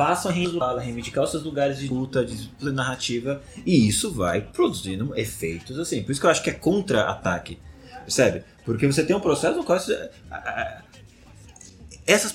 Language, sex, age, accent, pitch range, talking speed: Portuguese, male, 20-39, Brazilian, 105-140 Hz, 160 wpm